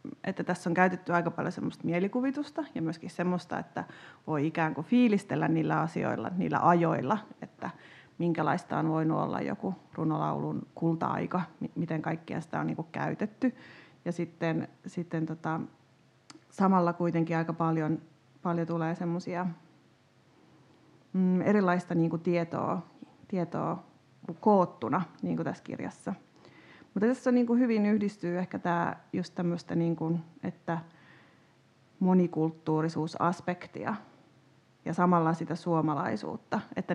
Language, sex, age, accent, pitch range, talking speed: Finnish, female, 30-49, native, 160-185 Hz, 115 wpm